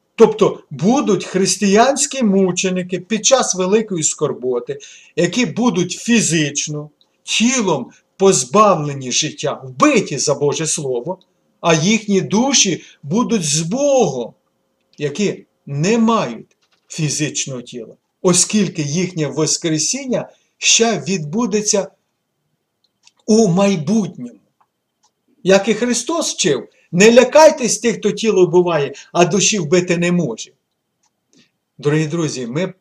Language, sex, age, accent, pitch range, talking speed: Ukrainian, male, 50-69, native, 155-215 Hz, 100 wpm